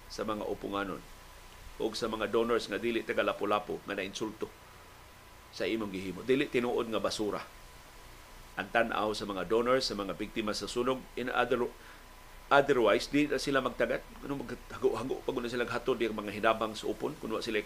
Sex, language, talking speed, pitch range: male, Filipino, 165 wpm, 100-130 Hz